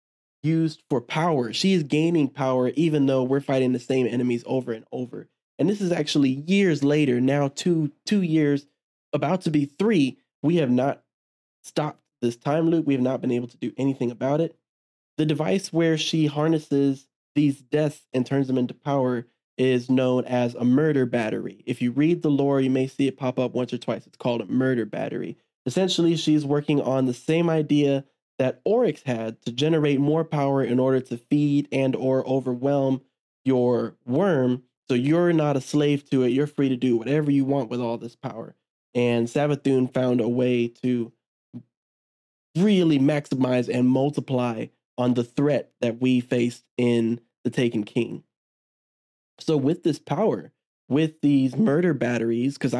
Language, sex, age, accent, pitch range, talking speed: English, male, 20-39, American, 125-150 Hz, 175 wpm